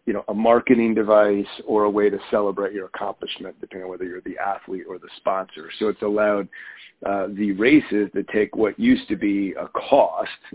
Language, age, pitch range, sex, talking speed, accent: English, 40-59, 95-110 Hz, male, 200 wpm, American